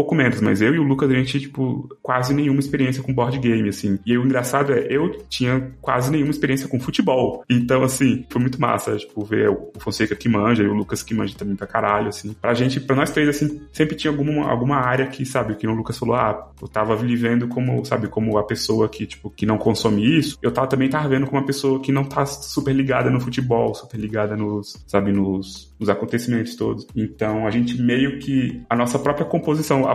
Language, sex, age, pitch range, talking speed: Portuguese, male, 20-39, 105-130 Hz, 230 wpm